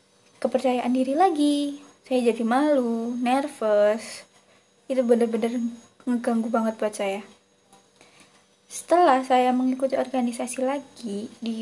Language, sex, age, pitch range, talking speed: Indonesian, female, 20-39, 220-250 Hz, 100 wpm